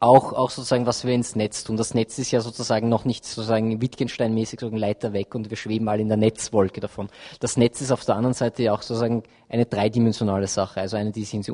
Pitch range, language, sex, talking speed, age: 110-125 Hz, German, male, 245 wpm, 20-39